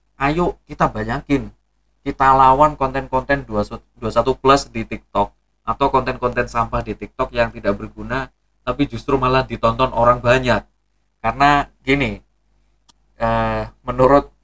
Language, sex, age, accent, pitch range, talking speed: Indonesian, male, 20-39, native, 115-145 Hz, 115 wpm